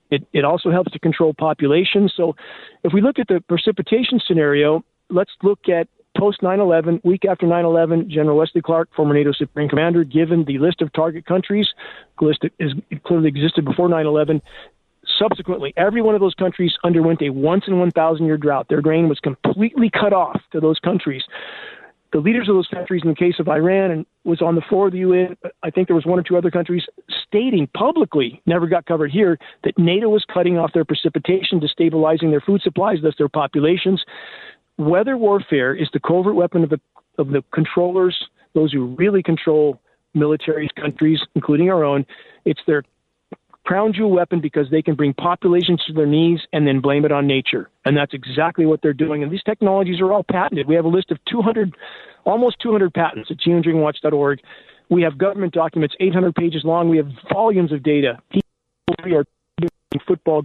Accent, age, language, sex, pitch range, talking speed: American, 40-59, English, male, 155-185 Hz, 185 wpm